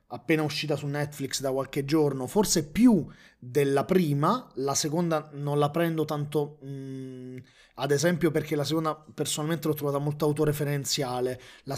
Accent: native